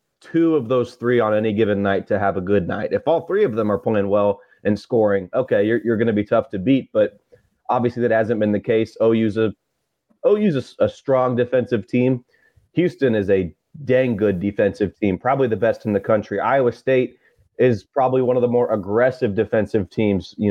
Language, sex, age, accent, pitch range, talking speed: English, male, 30-49, American, 105-130 Hz, 210 wpm